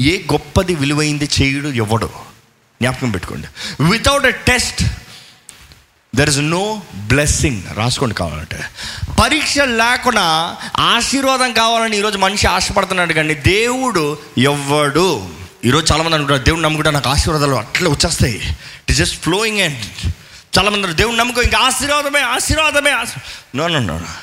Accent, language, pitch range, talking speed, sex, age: native, Telugu, 150-250 Hz, 110 wpm, male, 30-49